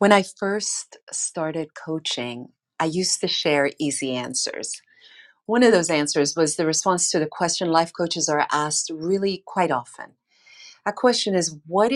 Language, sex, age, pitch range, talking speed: English, female, 40-59, 155-205 Hz, 160 wpm